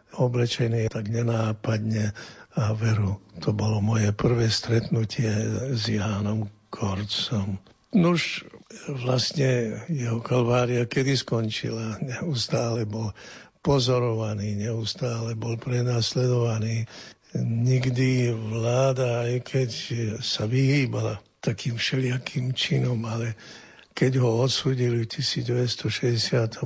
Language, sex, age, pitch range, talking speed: Slovak, male, 60-79, 110-130 Hz, 90 wpm